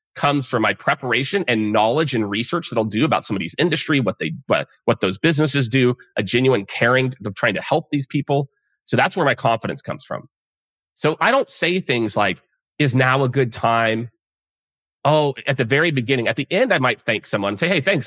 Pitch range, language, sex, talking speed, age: 105-150 Hz, English, male, 215 wpm, 30-49